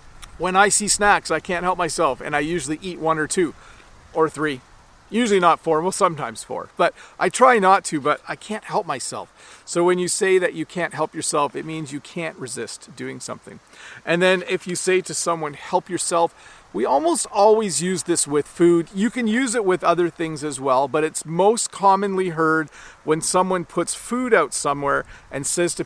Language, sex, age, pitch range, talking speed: English, male, 40-59, 160-200 Hz, 205 wpm